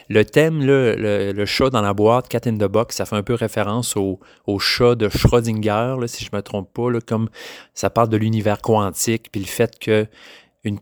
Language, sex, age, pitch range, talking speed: French, male, 30-49, 100-120 Hz, 225 wpm